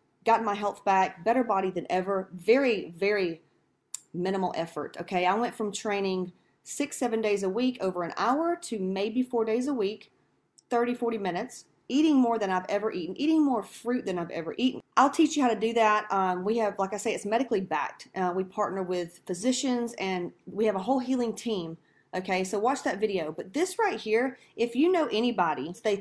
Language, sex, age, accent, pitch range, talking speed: English, female, 30-49, American, 195-260 Hz, 205 wpm